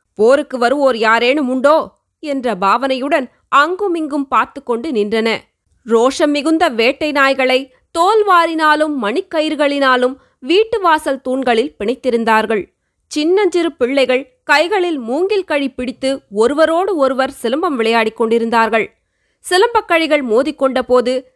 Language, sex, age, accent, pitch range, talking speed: Tamil, female, 20-39, native, 250-330 Hz, 100 wpm